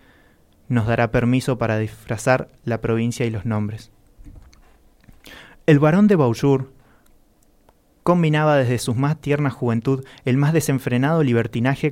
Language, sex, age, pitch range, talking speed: Spanish, male, 20-39, 115-140 Hz, 120 wpm